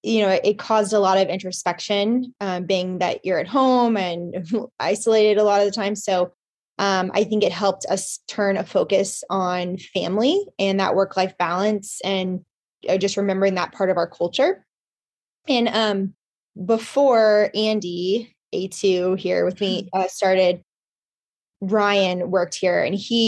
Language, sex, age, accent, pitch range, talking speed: English, female, 20-39, American, 180-210 Hz, 155 wpm